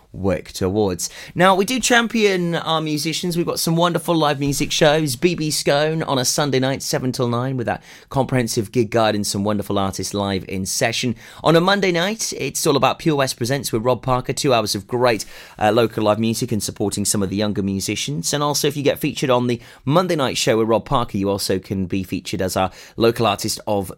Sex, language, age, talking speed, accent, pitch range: male, English, 30-49, 220 wpm, British, 105-145 Hz